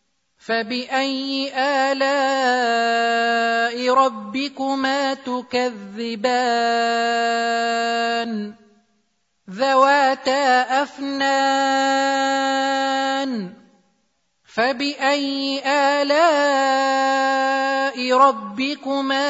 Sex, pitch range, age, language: male, 260-275 Hz, 30-49, Arabic